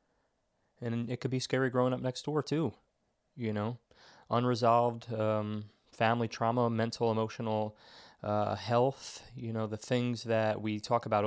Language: English